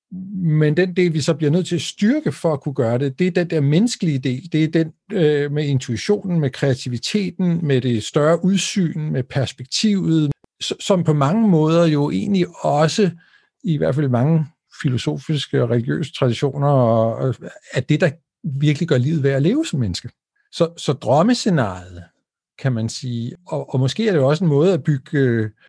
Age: 60-79